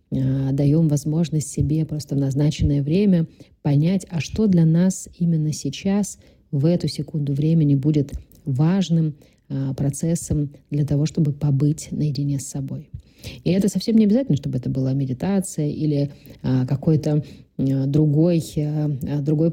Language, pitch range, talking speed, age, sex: Russian, 140-170 Hz, 125 wpm, 30-49, female